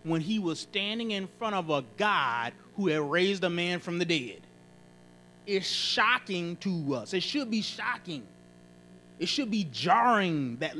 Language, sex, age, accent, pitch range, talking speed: English, male, 30-49, American, 140-235 Hz, 165 wpm